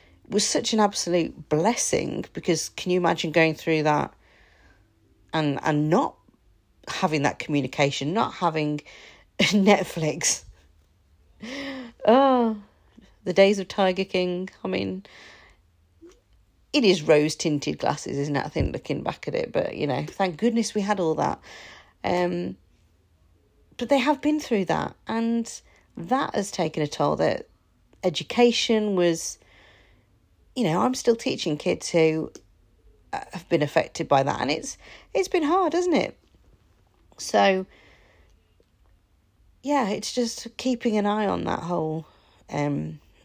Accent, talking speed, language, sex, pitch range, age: British, 135 wpm, English, female, 130-210 Hz, 40-59